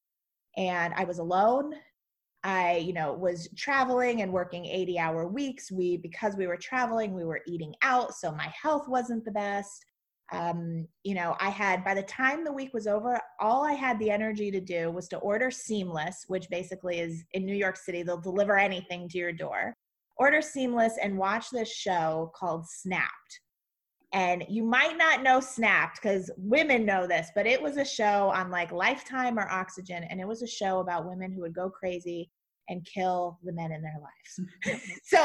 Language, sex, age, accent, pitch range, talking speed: English, female, 20-39, American, 175-230 Hz, 190 wpm